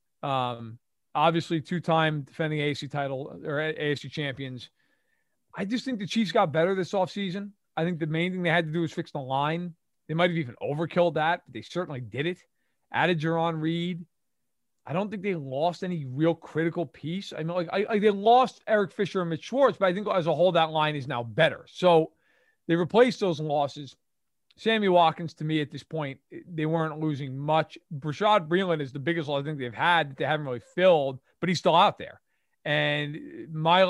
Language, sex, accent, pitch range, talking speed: English, male, American, 145-180 Hz, 205 wpm